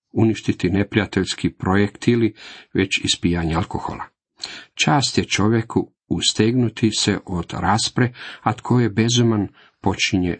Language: Croatian